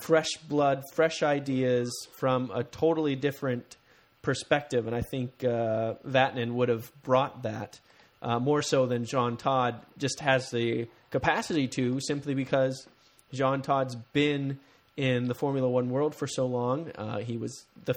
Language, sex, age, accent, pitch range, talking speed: English, male, 30-49, American, 120-140 Hz, 155 wpm